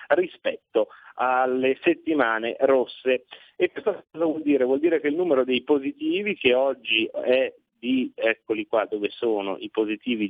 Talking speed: 150 wpm